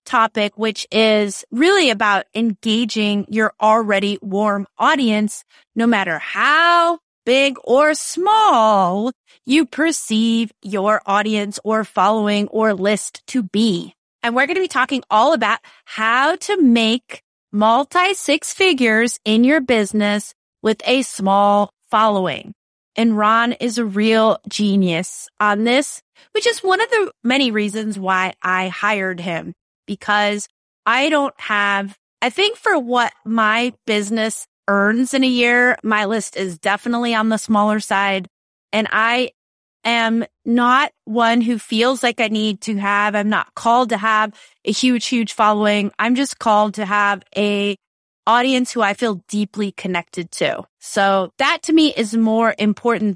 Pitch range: 205-245 Hz